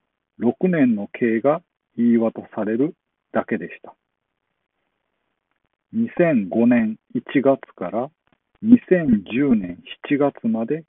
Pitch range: 110-145 Hz